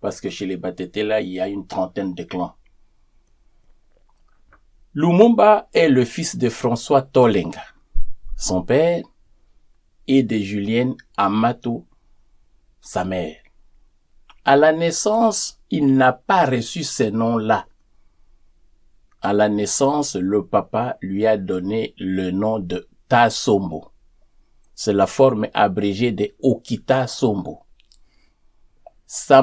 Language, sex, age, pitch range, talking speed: English, male, 50-69, 100-135 Hz, 110 wpm